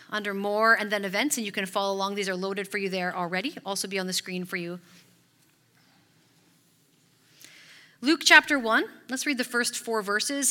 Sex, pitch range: female, 180-245 Hz